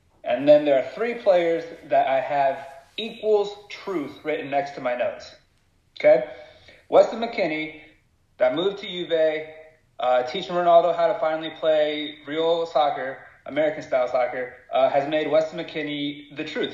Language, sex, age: English, male, 30-49